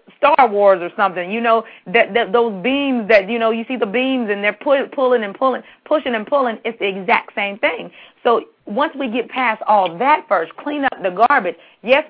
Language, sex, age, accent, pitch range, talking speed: English, female, 30-49, American, 210-255 Hz, 215 wpm